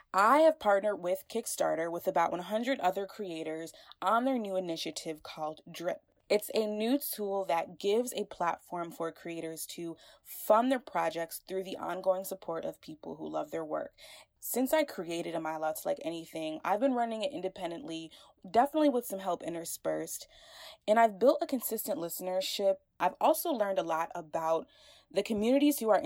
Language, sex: English, female